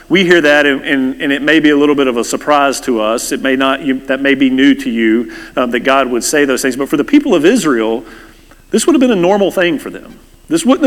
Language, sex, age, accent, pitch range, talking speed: English, male, 40-59, American, 145-215 Hz, 280 wpm